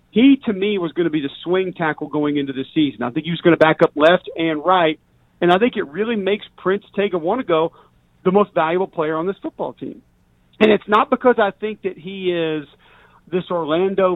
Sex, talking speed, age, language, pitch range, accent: male, 235 wpm, 40-59, English, 155-195 Hz, American